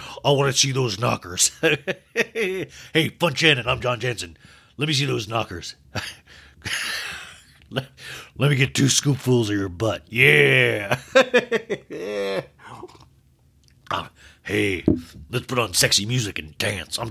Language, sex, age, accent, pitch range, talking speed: English, male, 40-59, American, 110-165 Hz, 125 wpm